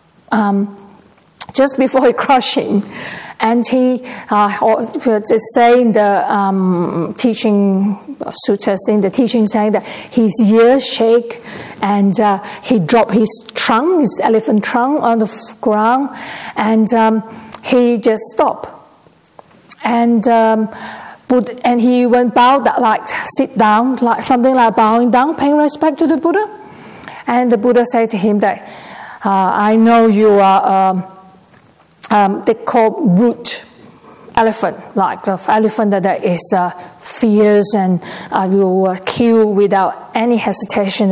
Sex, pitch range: female, 200-240 Hz